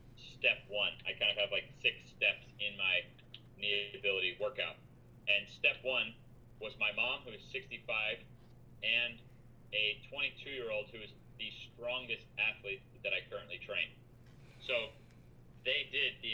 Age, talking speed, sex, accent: 30-49, 145 wpm, male, American